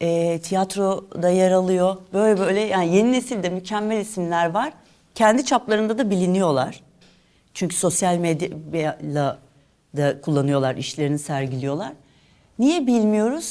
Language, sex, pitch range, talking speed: Turkish, female, 150-190 Hz, 110 wpm